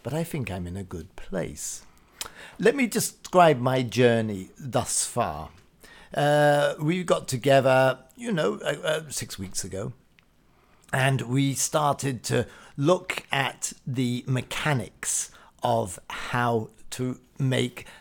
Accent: British